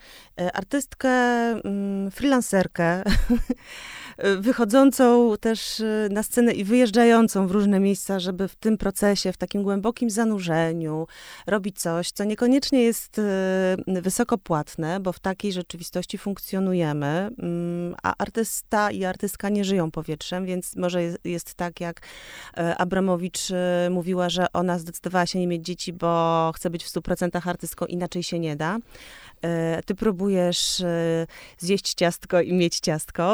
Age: 30-49